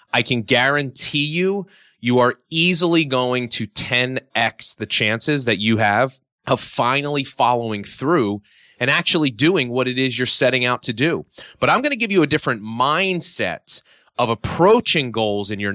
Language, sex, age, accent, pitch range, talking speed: English, male, 30-49, American, 110-150 Hz, 170 wpm